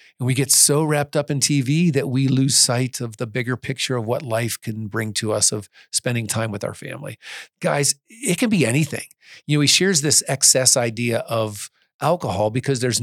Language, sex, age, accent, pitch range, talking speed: English, male, 40-59, American, 120-145 Hz, 205 wpm